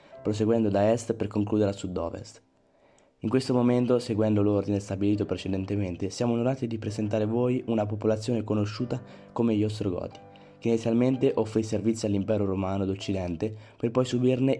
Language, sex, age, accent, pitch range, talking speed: Italian, male, 20-39, native, 100-115 Hz, 150 wpm